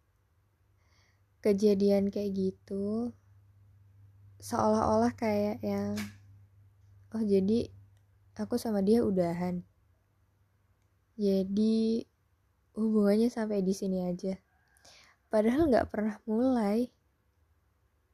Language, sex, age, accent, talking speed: Indonesian, female, 10-29, native, 75 wpm